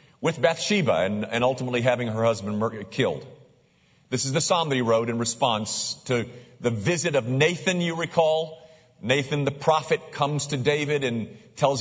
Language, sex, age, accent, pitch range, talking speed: English, male, 50-69, American, 115-160 Hz, 175 wpm